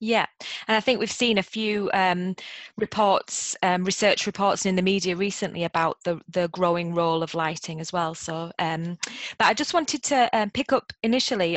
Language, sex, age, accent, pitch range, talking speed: English, female, 20-39, British, 175-200 Hz, 190 wpm